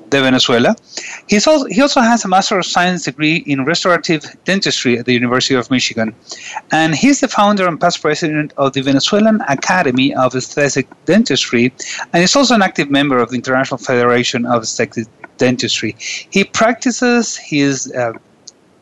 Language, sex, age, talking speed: English, male, 30-49, 165 wpm